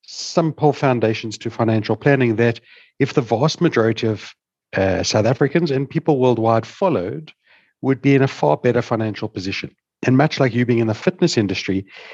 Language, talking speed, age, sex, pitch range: English, 175 wpm, 60-79, male, 110-145 Hz